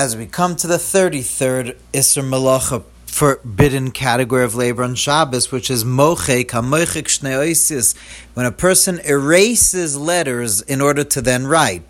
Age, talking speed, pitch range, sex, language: 40-59, 130 wpm, 115-155 Hz, male, English